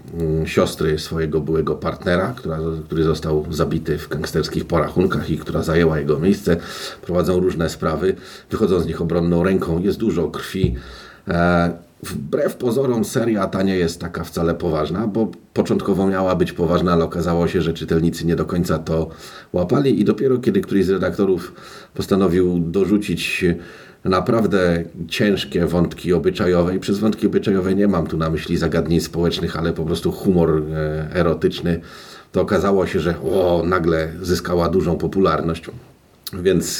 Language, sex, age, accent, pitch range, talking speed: Polish, male, 40-59, native, 80-100 Hz, 145 wpm